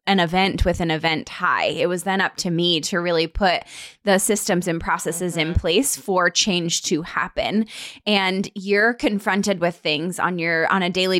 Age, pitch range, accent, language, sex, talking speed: 20-39, 175-210 Hz, American, English, female, 190 wpm